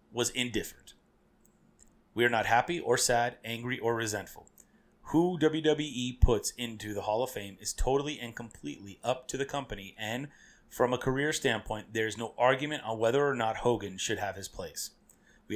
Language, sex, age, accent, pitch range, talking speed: English, male, 30-49, American, 110-135 Hz, 175 wpm